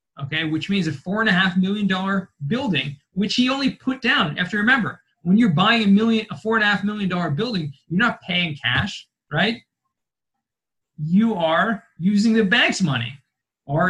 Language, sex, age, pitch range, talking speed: English, male, 20-39, 155-215 Hz, 195 wpm